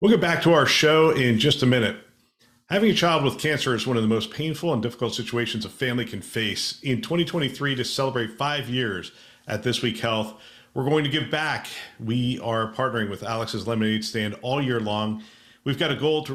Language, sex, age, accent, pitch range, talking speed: English, male, 40-59, American, 110-130 Hz, 215 wpm